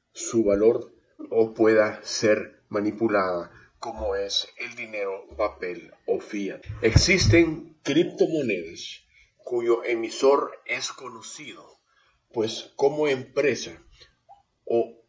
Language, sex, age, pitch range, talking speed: Spanish, male, 50-69, 105-135 Hz, 90 wpm